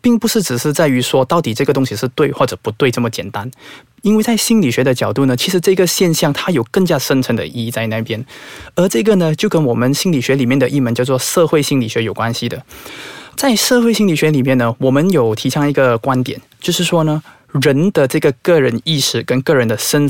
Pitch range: 125-175 Hz